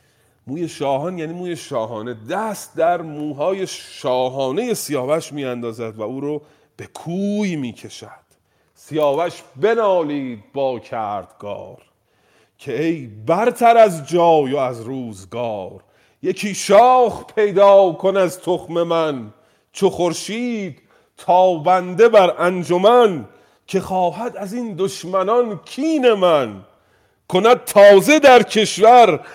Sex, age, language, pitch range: male, 40-59, Persian, 130-190 Hz